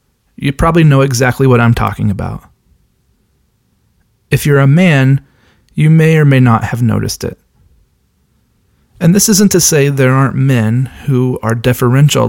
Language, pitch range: English, 105-135 Hz